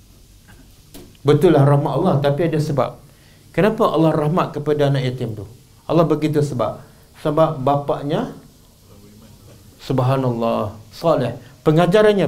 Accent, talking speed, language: Indonesian, 105 wpm, English